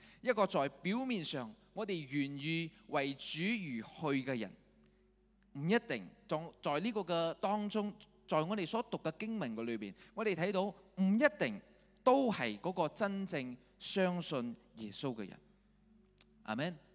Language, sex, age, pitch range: Chinese, male, 20-39, 130-205 Hz